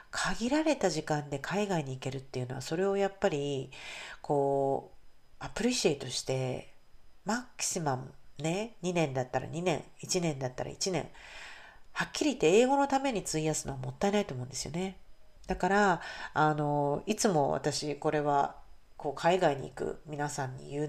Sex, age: female, 40-59